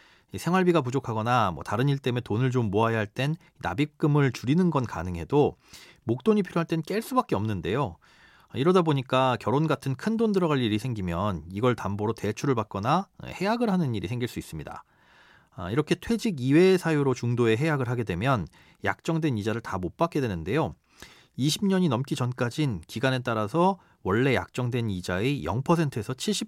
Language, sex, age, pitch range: Korean, male, 40-59, 110-165 Hz